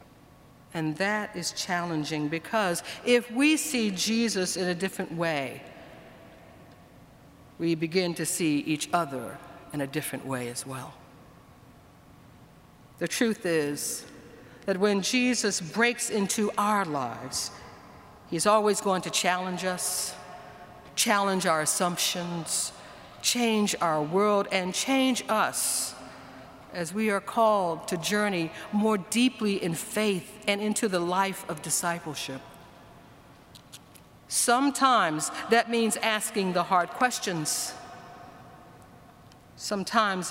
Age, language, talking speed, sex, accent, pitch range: 60-79, English, 110 wpm, female, American, 165-215 Hz